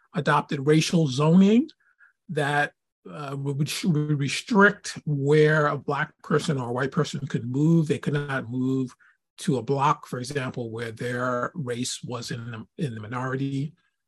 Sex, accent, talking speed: male, American, 145 wpm